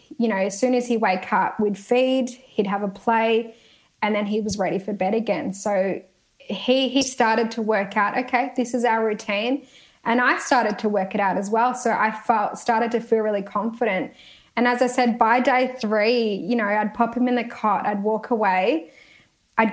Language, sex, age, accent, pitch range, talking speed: English, female, 10-29, Australian, 210-245 Hz, 215 wpm